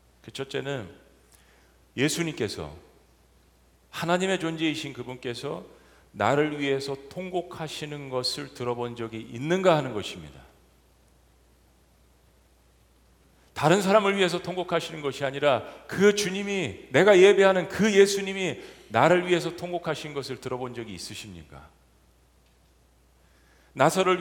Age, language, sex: 40-59, Korean, male